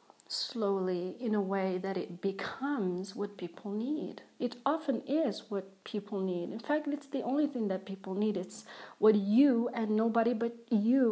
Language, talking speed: English, 175 wpm